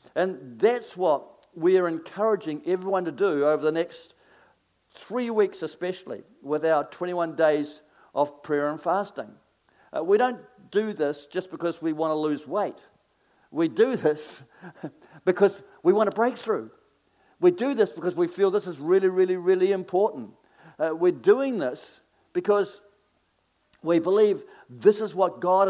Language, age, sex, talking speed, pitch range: English, 50-69, male, 155 wpm, 145-195 Hz